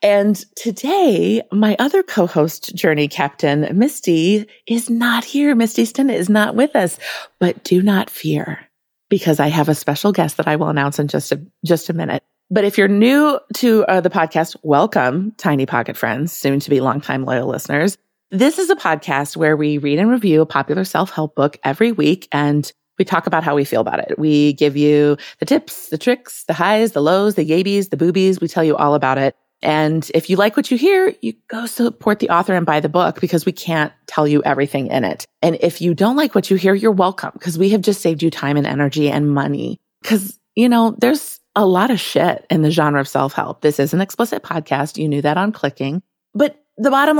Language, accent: English, American